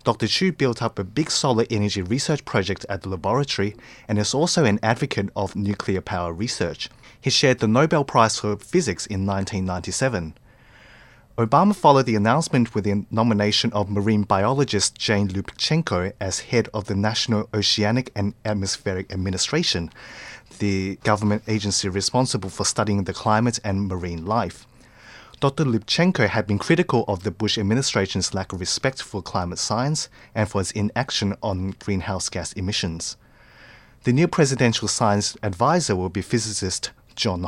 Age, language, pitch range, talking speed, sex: 20-39, English, 100-120 Hz, 150 wpm, male